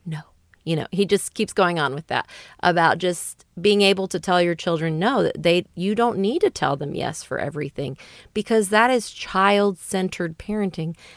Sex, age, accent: female, 30-49, American